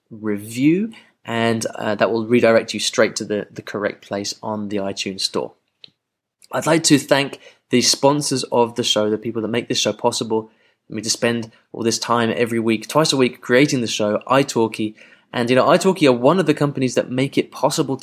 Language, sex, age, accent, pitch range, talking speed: English, male, 20-39, British, 105-130 Hz, 215 wpm